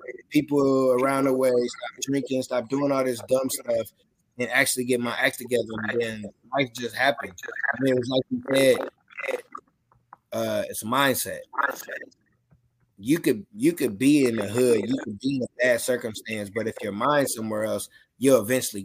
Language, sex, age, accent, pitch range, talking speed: English, male, 20-39, American, 120-140 Hz, 180 wpm